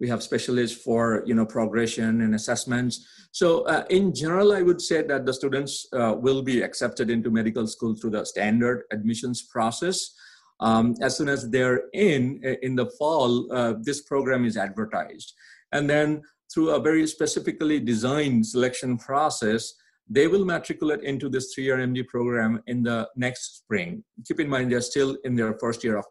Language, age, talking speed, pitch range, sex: English, 50-69, 170 wpm, 115-150 Hz, male